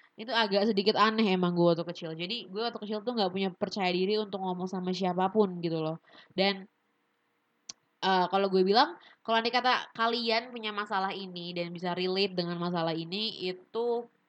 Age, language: 20-39, Indonesian